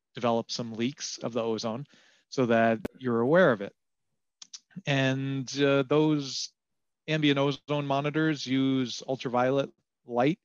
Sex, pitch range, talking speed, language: male, 115-140 Hz, 120 wpm, English